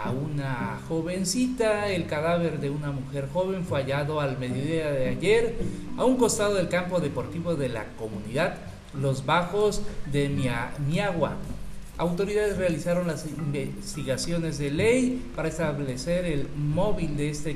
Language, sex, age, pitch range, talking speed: Spanish, male, 50-69, 145-195 Hz, 135 wpm